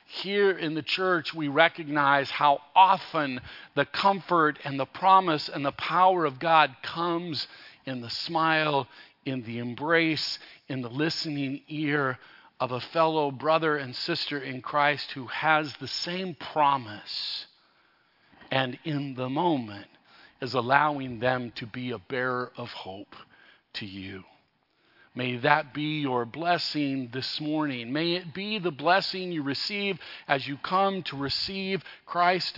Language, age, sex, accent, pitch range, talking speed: English, 50-69, male, American, 135-170 Hz, 140 wpm